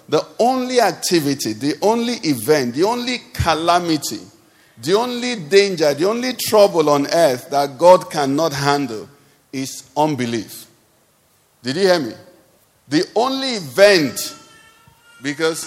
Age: 50-69